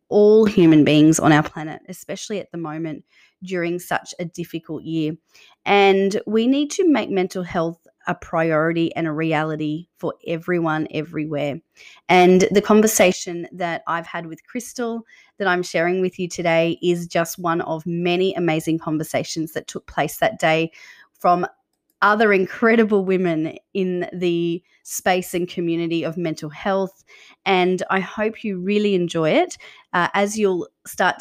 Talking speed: 150 wpm